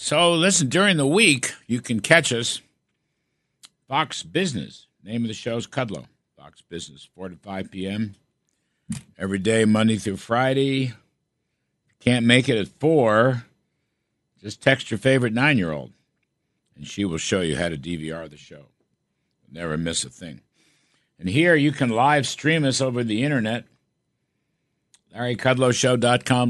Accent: American